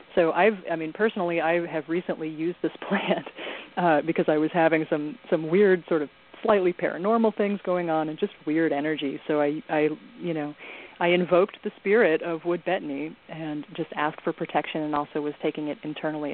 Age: 30-49